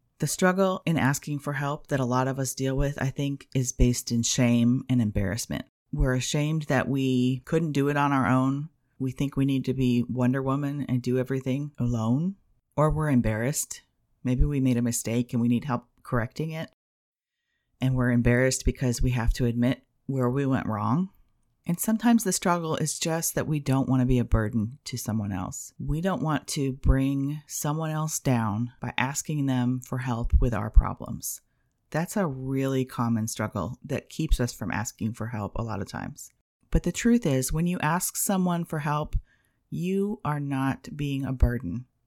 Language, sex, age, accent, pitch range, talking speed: English, female, 30-49, American, 125-150 Hz, 190 wpm